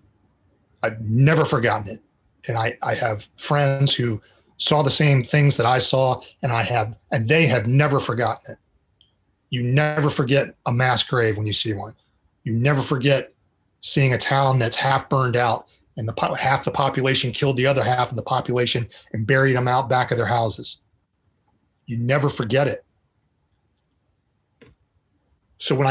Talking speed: 165 wpm